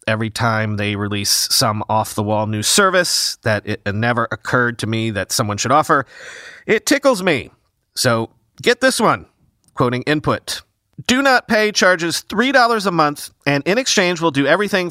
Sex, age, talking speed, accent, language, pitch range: male, 40-59, 160 wpm, American, English, 135-200 Hz